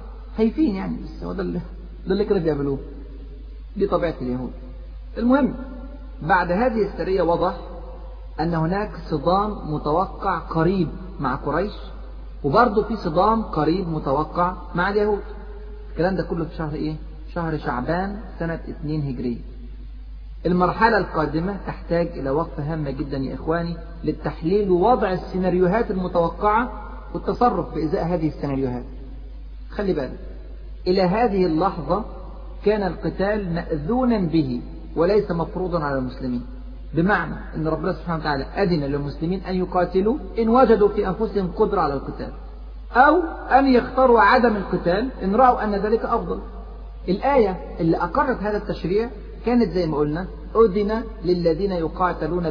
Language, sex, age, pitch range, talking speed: Arabic, male, 40-59, 155-210 Hz, 125 wpm